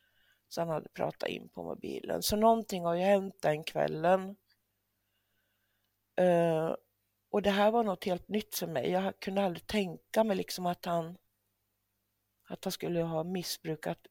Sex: female